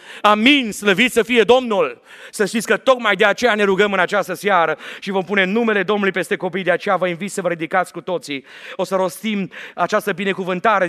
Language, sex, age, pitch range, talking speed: Romanian, male, 30-49, 165-200 Hz, 205 wpm